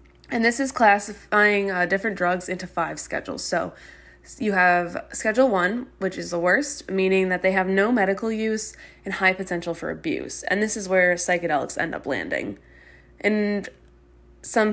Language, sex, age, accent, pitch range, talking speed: English, female, 20-39, American, 180-225 Hz, 165 wpm